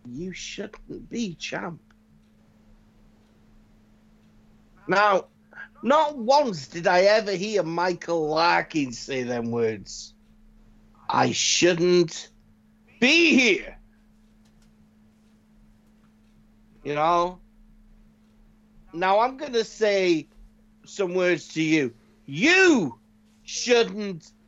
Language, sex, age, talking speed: English, male, 60-79, 80 wpm